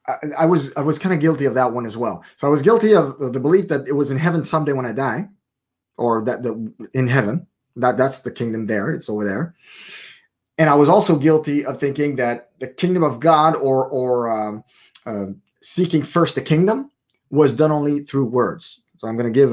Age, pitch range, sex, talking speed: 30-49, 125-170 Hz, male, 220 wpm